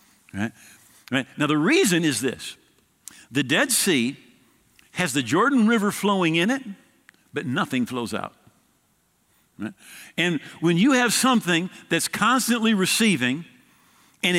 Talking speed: 115 wpm